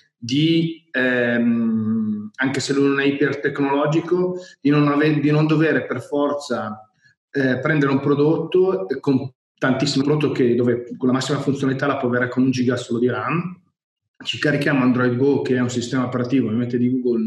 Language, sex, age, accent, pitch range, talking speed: Italian, male, 30-49, native, 130-165 Hz, 170 wpm